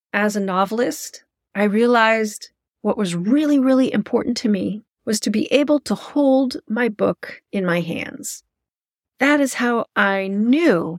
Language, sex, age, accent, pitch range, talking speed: English, female, 40-59, American, 180-235 Hz, 155 wpm